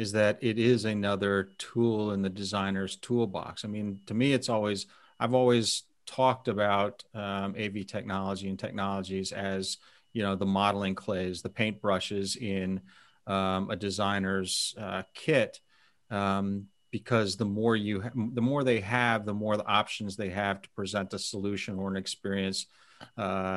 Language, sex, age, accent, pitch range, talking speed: English, male, 40-59, American, 100-115 Hz, 165 wpm